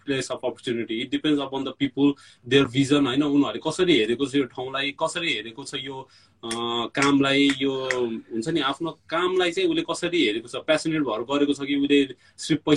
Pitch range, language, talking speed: 130-160 Hz, English, 100 wpm